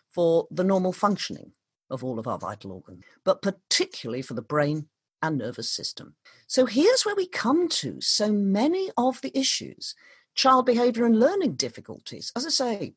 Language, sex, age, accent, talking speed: English, female, 40-59, British, 170 wpm